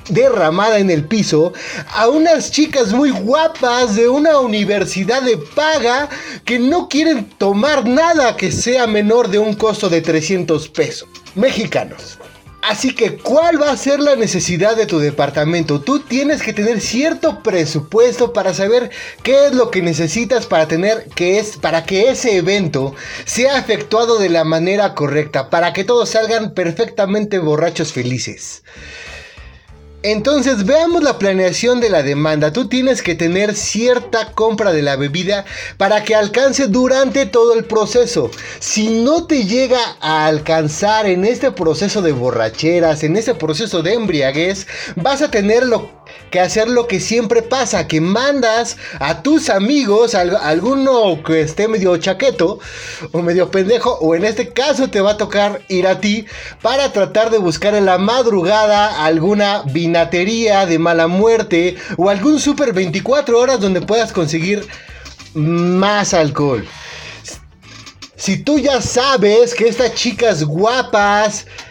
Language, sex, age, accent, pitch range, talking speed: Spanish, male, 30-49, Mexican, 170-245 Hz, 150 wpm